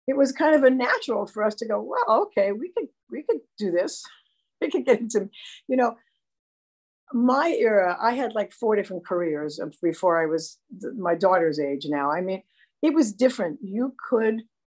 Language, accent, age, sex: English, American, 50-69, female